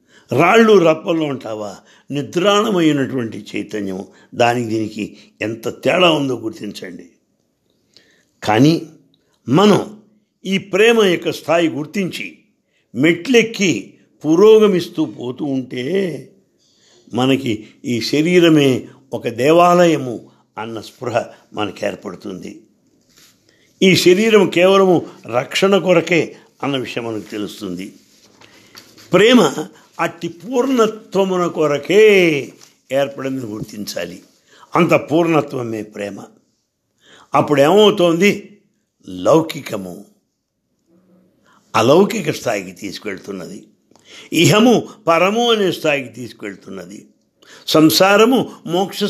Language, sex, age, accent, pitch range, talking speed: English, male, 60-79, Indian, 125-190 Hz, 80 wpm